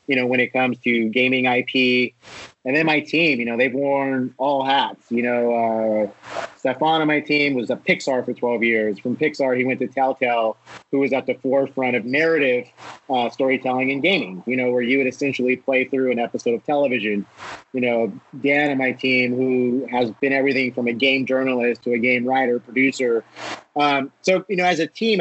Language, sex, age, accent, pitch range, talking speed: English, male, 30-49, American, 125-145 Hz, 205 wpm